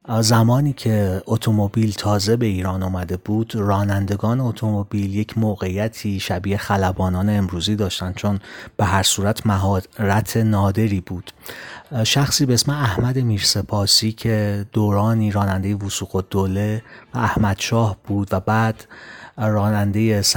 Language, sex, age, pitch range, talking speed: Persian, male, 30-49, 100-115 Hz, 120 wpm